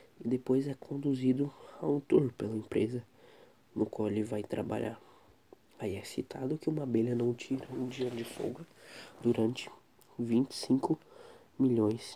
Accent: Brazilian